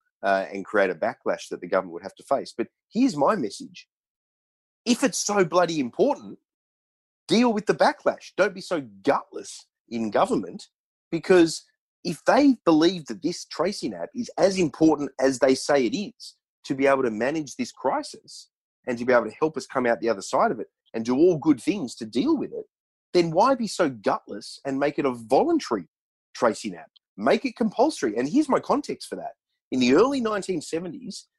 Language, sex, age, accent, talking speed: English, male, 30-49, Australian, 195 wpm